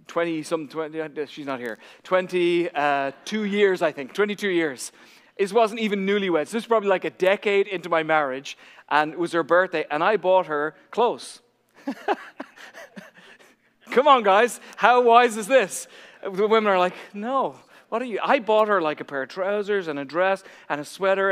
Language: English